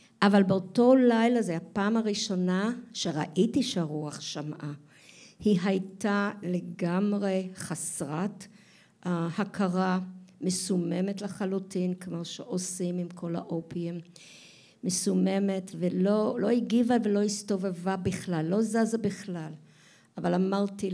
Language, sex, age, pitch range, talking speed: Hebrew, female, 50-69, 175-205 Hz, 95 wpm